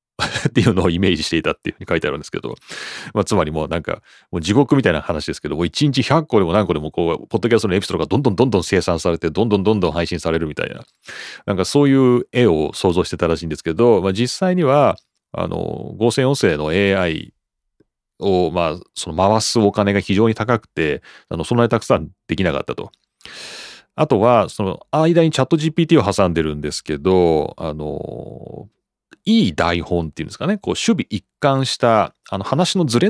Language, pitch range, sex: Japanese, 85-130 Hz, male